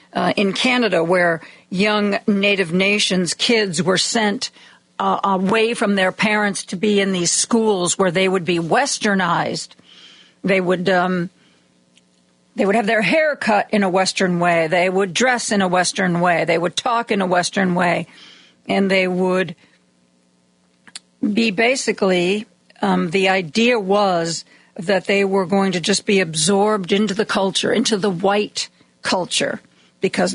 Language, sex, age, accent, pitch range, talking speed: English, female, 50-69, American, 160-205 Hz, 150 wpm